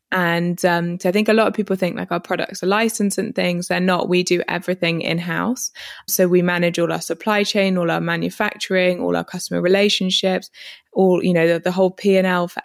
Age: 20-39